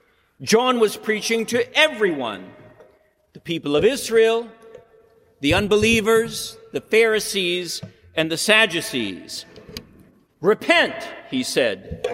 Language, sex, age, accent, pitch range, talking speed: English, male, 50-69, American, 190-250 Hz, 95 wpm